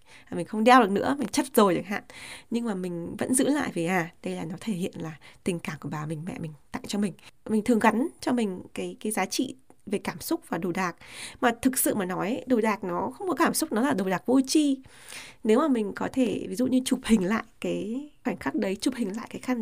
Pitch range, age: 185-250 Hz, 20-39